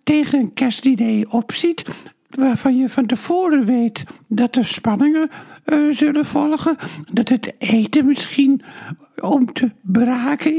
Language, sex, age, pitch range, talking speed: Dutch, male, 60-79, 240-290 Hz, 125 wpm